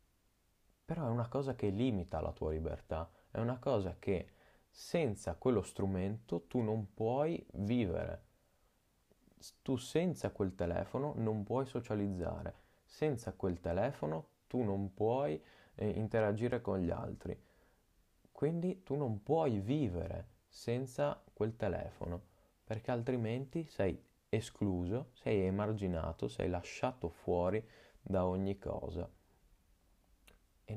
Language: Italian